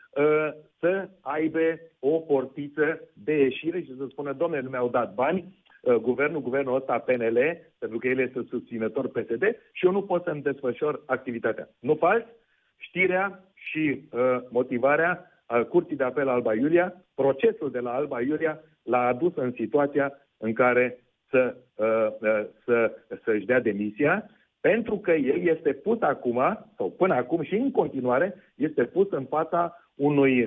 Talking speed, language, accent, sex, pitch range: 155 wpm, Romanian, native, male, 125-170 Hz